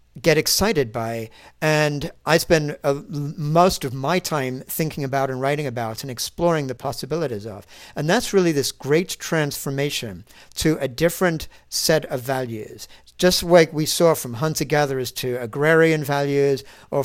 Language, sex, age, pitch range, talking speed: English, male, 50-69, 135-170 Hz, 150 wpm